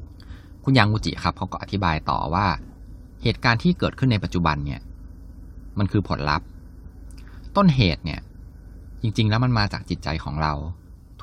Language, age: Thai, 20-39